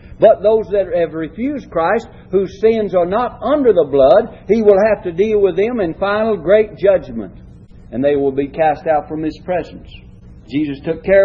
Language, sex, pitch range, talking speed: English, male, 120-195 Hz, 190 wpm